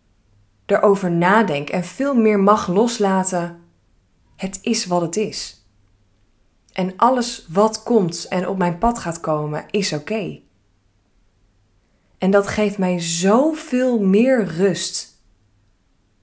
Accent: Dutch